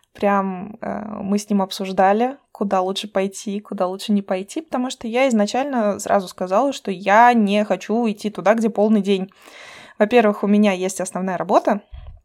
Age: 20-39